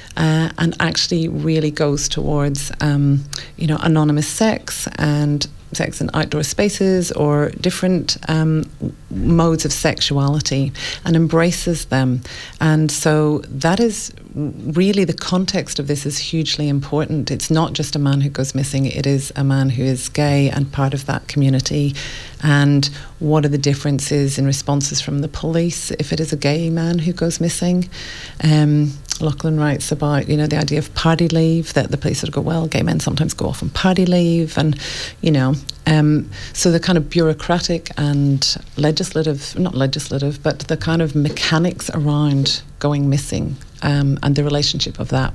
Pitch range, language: 140-160 Hz, English